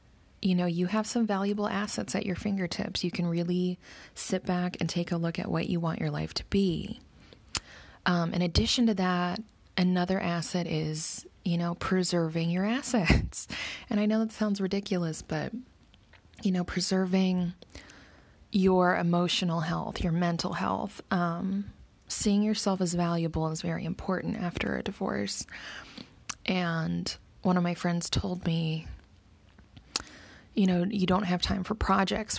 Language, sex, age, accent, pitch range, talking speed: English, female, 20-39, American, 165-195 Hz, 150 wpm